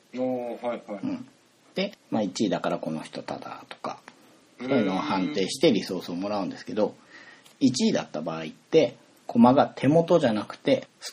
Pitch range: 105-155 Hz